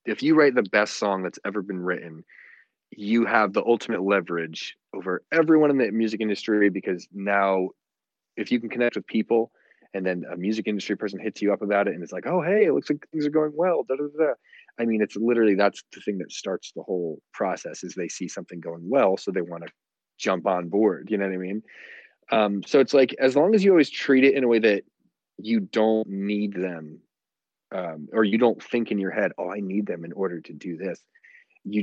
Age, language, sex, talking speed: 30-49, English, male, 225 wpm